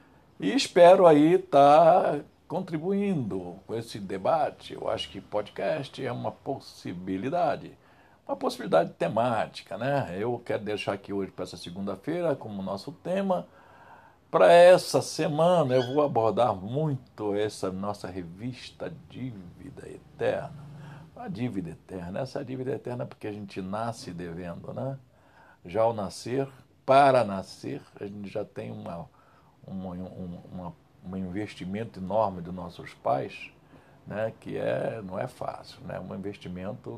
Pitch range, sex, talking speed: 95-140 Hz, male, 135 wpm